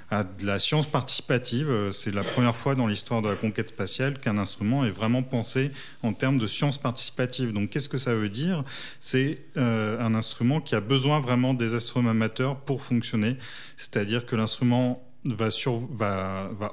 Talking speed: 170 wpm